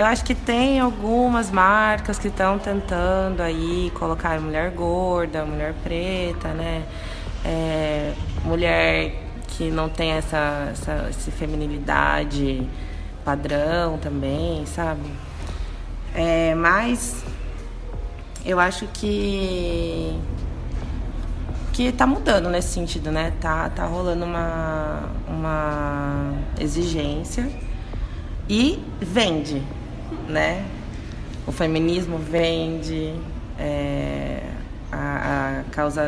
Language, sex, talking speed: English, female, 90 wpm